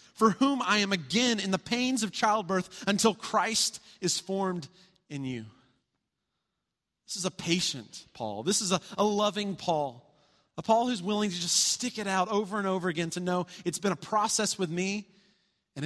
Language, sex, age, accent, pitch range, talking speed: English, male, 30-49, American, 145-195 Hz, 185 wpm